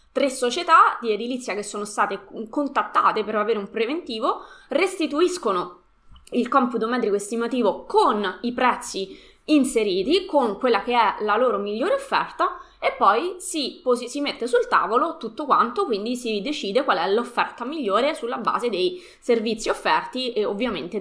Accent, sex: native, female